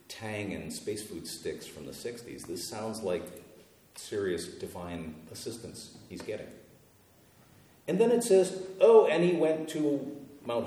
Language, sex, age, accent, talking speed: English, male, 50-69, American, 145 wpm